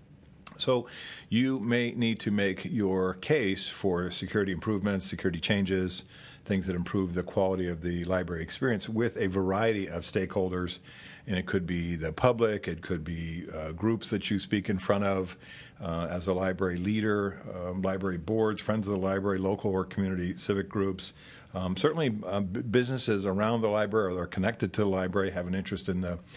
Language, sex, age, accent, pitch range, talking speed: English, male, 50-69, American, 90-105 Hz, 185 wpm